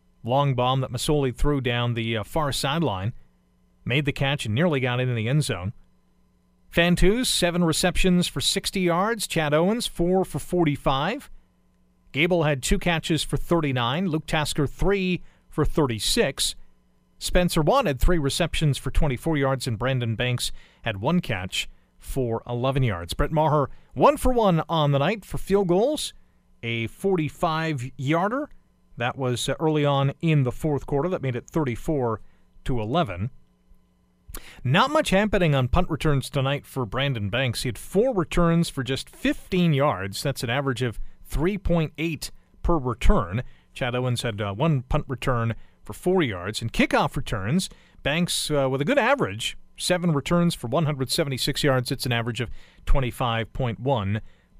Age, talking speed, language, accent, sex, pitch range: 40-59, 155 wpm, English, American, male, 115-165 Hz